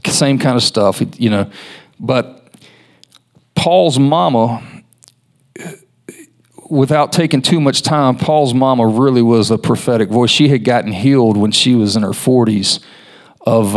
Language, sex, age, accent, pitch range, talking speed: English, male, 40-59, American, 110-130 Hz, 140 wpm